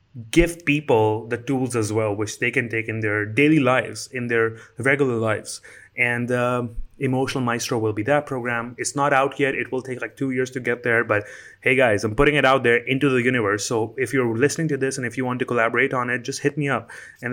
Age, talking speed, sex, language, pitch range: 30-49, 240 wpm, male, English, 115-140 Hz